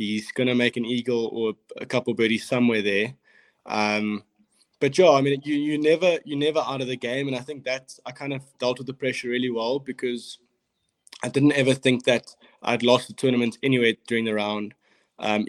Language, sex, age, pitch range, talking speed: English, male, 20-39, 110-125 Hz, 205 wpm